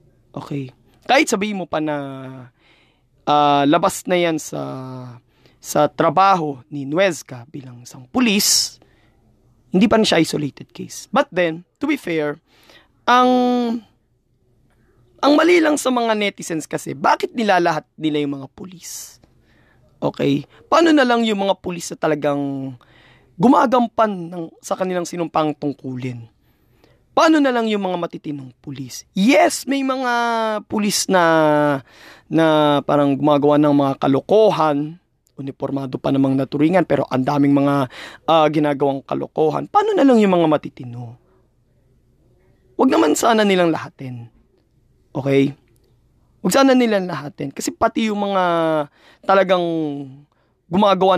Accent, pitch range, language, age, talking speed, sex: native, 135-195 Hz, Filipino, 20-39, 125 wpm, male